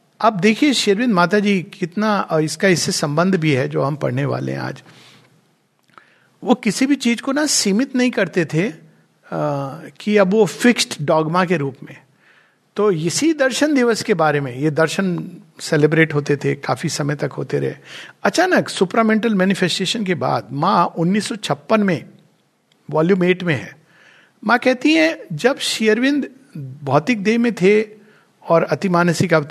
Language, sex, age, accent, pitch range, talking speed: Hindi, male, 50-69, native, 165-230 Hz, 155 wpm